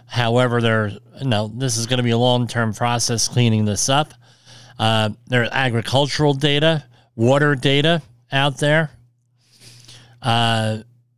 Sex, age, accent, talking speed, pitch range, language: male, 40-59, American, 125 wpm, 120-135 Hz, English